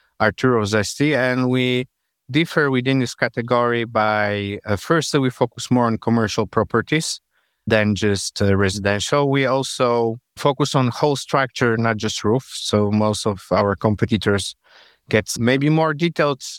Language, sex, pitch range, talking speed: English, male, 95-130 Hz, 140 wpm